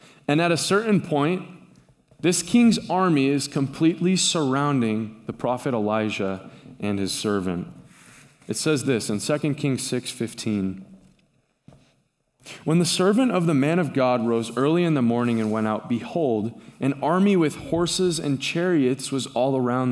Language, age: English, 20-39